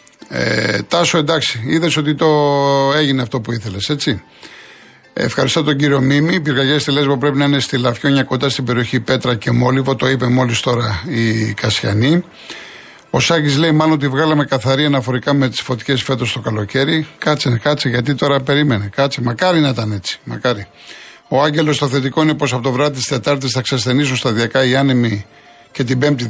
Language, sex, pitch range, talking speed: Greek, male, 125-150 Hz, 175 wpm